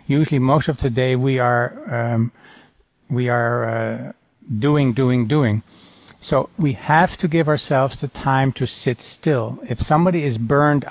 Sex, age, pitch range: male, 60-79, 120-140 Hz